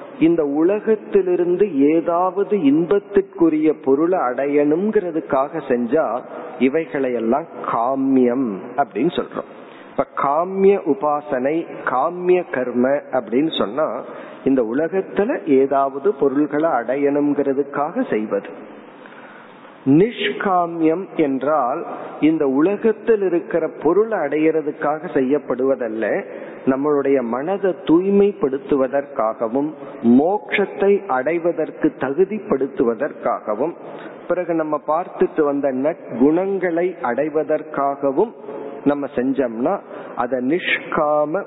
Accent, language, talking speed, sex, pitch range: native, Tamil, 65 wpm, male, 135-180 Hz